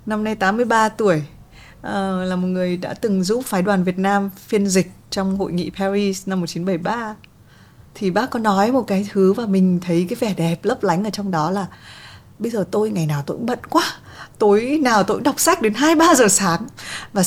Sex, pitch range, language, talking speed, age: female, 180-240 Hz, Vietnamese, 210 wpm, 20-39